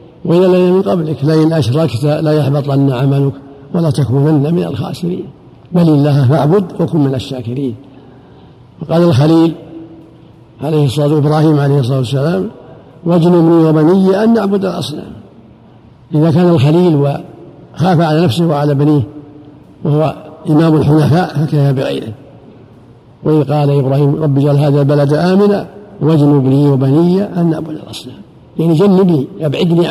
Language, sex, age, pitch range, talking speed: Arabic, male, 50-69, 140-165 Hz, 130 wpm